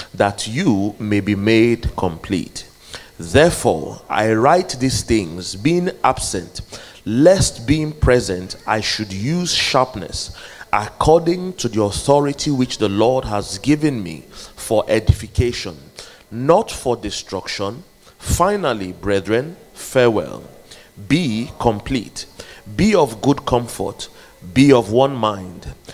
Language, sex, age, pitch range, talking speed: English, male, 30-49, 95-120 Hz, 110 wpm